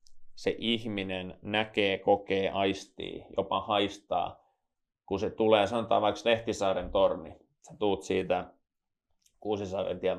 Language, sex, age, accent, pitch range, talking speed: Finnish, male, 30-49, native, 95-115 Hz, 105 wpm